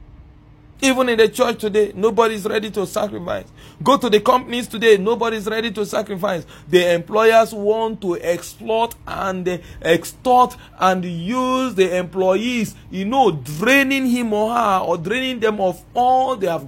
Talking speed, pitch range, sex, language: 150 wpm, 155-225 Hz, male, English